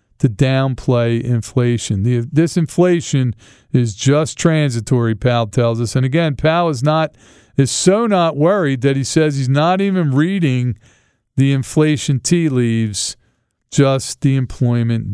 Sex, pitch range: male, 115-145 Hz